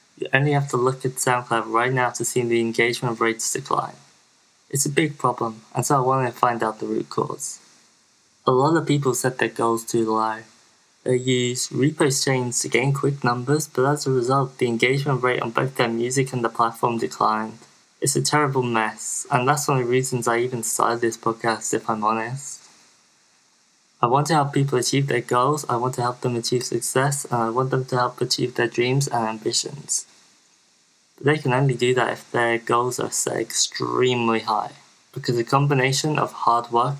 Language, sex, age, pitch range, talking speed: English, male, 20-39, 115-130 Hz, 200 wpm